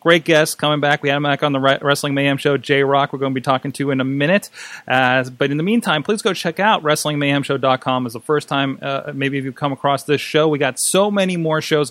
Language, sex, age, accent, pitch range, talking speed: English, male, 30-49, American, 130-165 Hz, 255 wpm